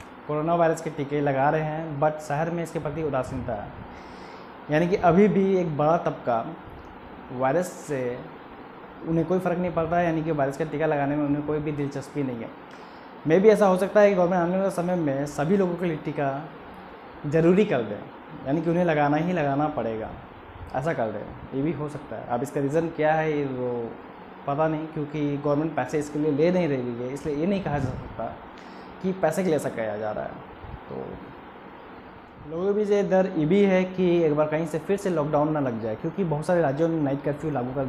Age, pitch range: 20-39, 140-170 Hz